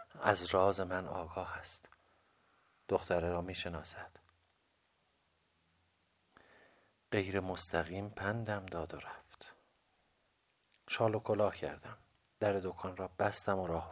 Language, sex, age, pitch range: Persian, male, 50-69, 80-95 Hz